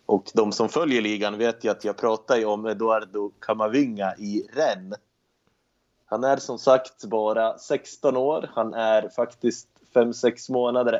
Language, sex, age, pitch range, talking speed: Swedish, male, 20-39, 105-120 Hz, 155 wpm